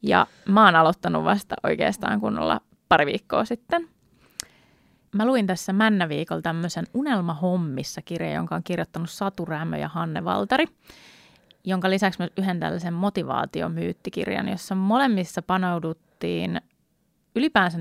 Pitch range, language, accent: 170-215 Hz, Finnish, native